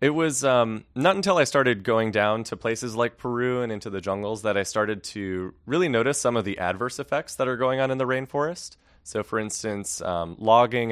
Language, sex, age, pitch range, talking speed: English, male, 20-39, 95-120 Hz, 220 wpm